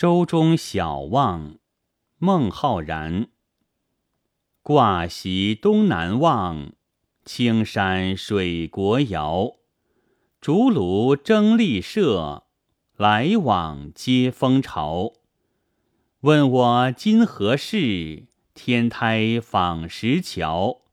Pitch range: 90-140 Hz